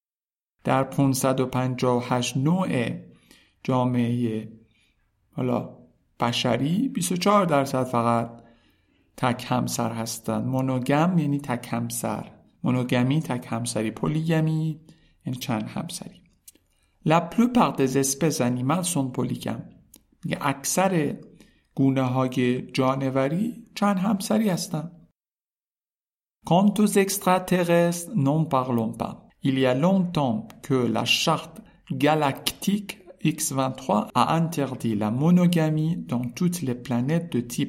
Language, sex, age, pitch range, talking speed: Persian, male, 50-69, 125-175 Hz, 100 wpm